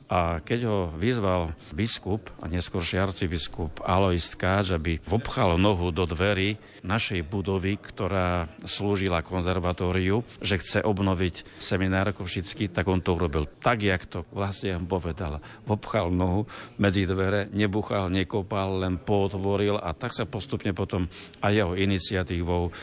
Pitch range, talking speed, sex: 90-105 Hz, 130 wpm, male